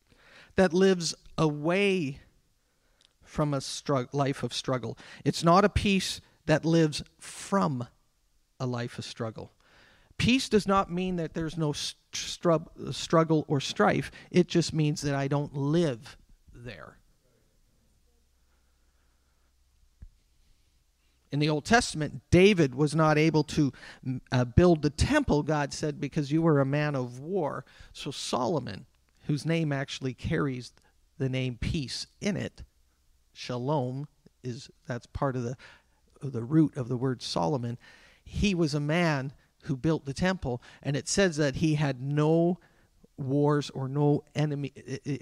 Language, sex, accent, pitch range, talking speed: English, male, American, 125-165 Hz, 135 wpm